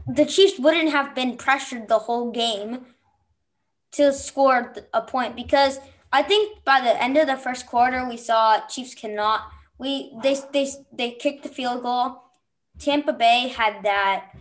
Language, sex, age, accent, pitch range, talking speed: English, female, 20-39, American, 220-275 Hz, 160 wpm